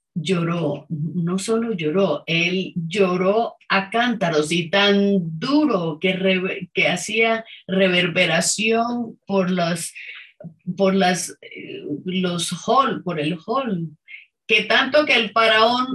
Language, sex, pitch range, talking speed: English, female, 175-230 Hz, 115 wpm